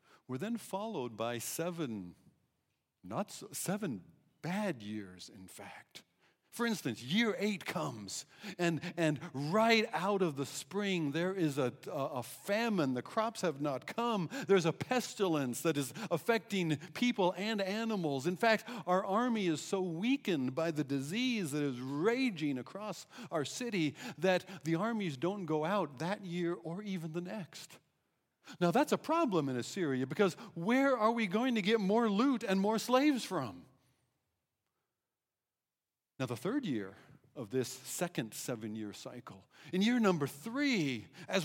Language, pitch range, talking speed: English, 145-210 Hz, 150 wpm